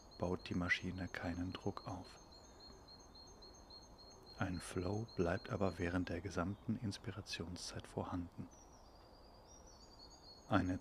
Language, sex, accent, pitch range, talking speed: German, male, German, 90-110 Hz, 90 wpm